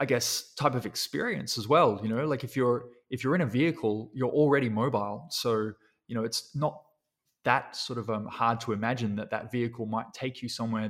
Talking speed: 215 wpm